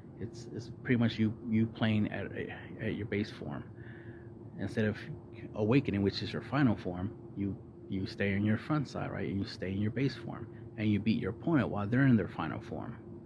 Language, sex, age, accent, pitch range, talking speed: English, male, 30-49, American, 105-120 Hz, 210 wpm